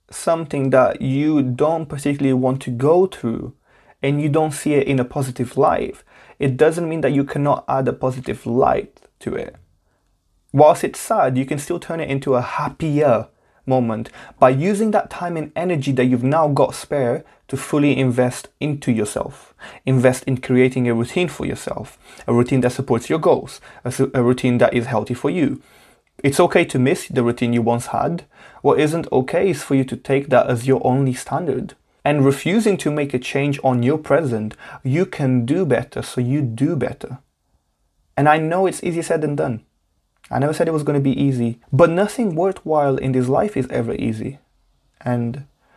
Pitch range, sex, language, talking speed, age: 125-150 Hz, male, English, 190 wpm, 20-39